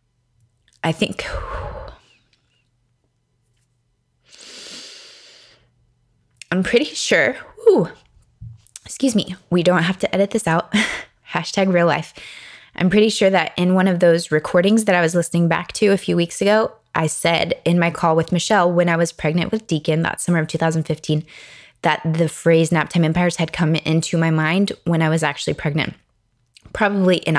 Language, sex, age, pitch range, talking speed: English, female, 20-39, 155-190 Hz, 155 wpm